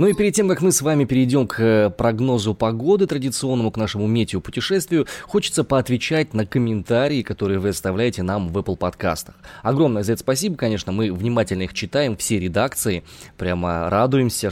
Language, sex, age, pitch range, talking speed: Russian, male, 20-39, 105-145 Hz, 165 wpm